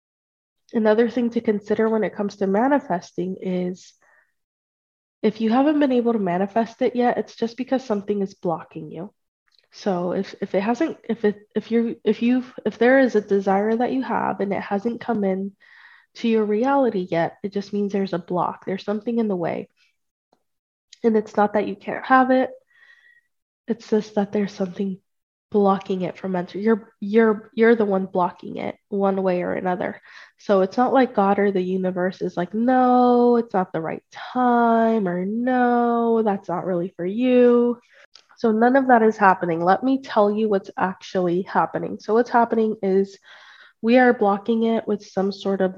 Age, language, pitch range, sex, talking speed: 20-39, English, 190-235 Hz, female, 185 wpm